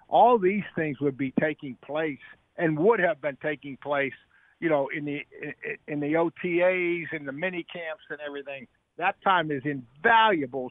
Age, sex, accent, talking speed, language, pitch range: 60-79, male, American, 170 wpm, English, 140-170 Hz